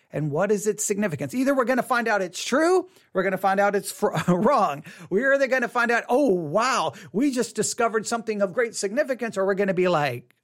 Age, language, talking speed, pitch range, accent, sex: 40-59, English, 235 wpm, 170-230 Hz, American, male